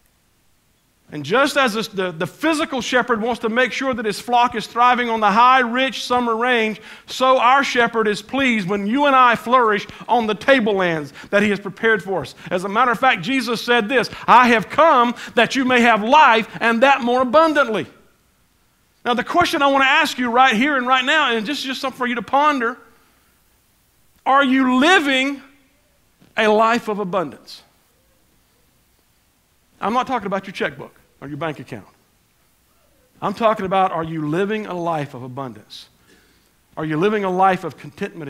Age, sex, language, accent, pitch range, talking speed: 50-69, male, English, American, 160-245 Hz, 180 wpm